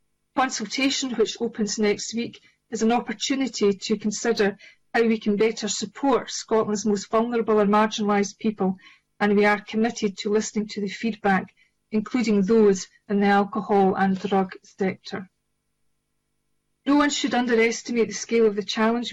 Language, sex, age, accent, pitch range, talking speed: English, female, 40-59, British, 205-235 Hz, 150 wpm